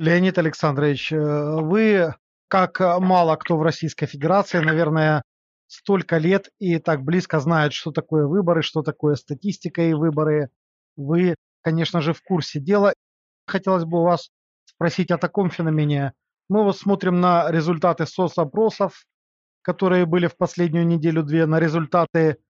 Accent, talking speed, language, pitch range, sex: native, 140 wpm, Russian, 155-180 Hz, male